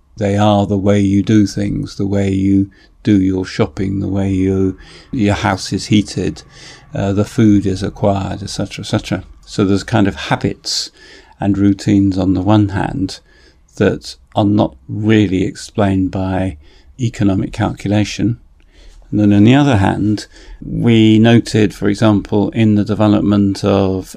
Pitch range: 95-105 Hz